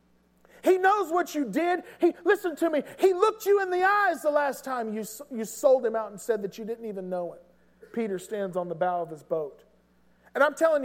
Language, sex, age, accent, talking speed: English, male, 40-59, American, 230 wpm